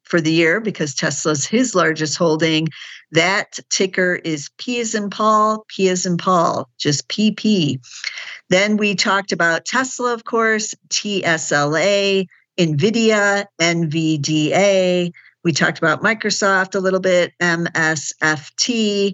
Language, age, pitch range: English, 50-69, 160-200 Hz